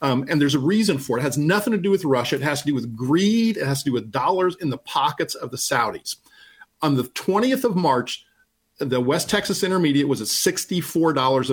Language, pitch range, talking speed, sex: English, 140-190 Hz, 230 wpm, male